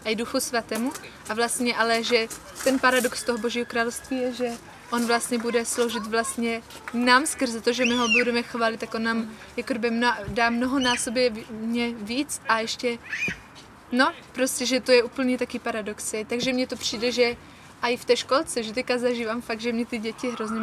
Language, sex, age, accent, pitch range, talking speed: Czech, female, 20-39, native, 235-265 Hz, 185 wpm